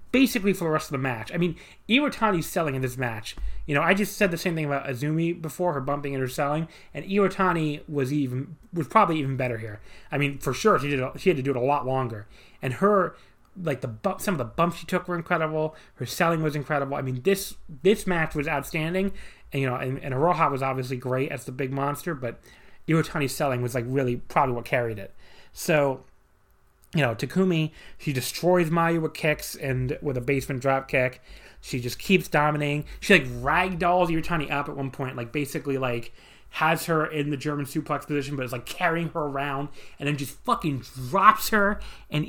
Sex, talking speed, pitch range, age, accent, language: male, 210 wpm, 130-175 Hz, 30-49, American, English